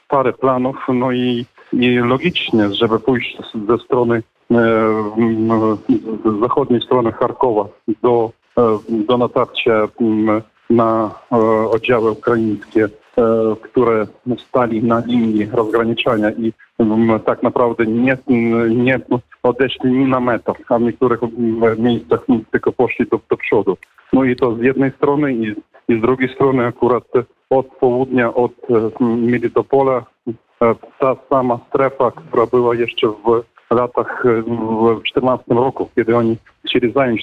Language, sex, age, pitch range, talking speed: Polish, male, 40-59, 115-130 Hz, 135 wpm